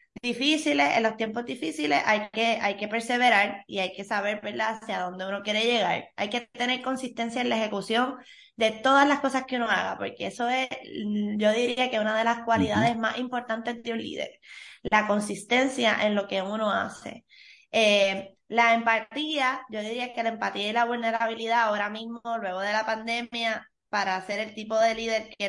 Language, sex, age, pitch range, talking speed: English, female, 20-39, 210-240 Hz, 190 wpm